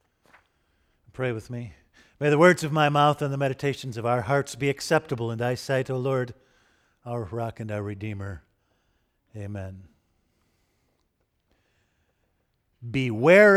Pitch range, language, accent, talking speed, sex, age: 120-150 Hz, English, American, 130 wpm, male, 50-69